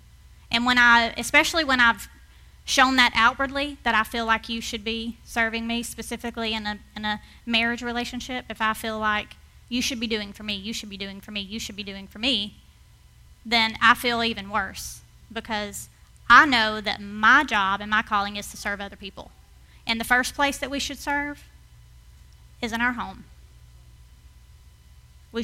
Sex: female